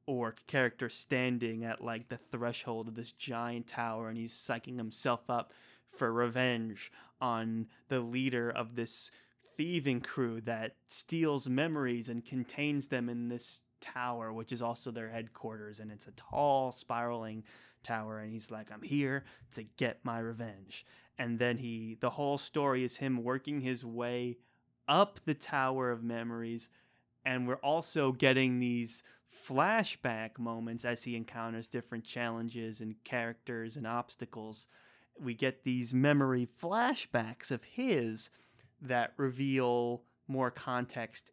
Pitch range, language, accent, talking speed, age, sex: 115-130 Hz, English, American, 140 wpm, 20-39, male